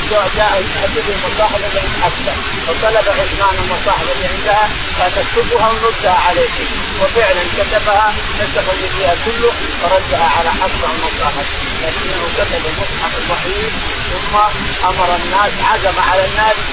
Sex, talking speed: male, 120 wpm